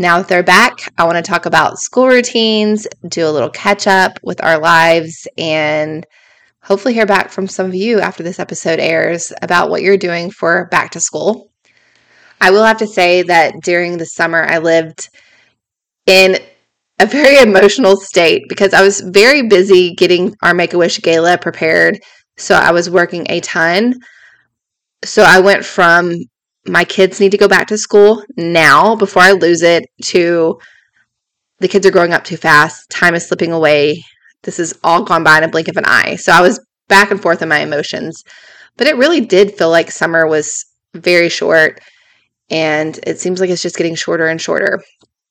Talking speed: 185 wpm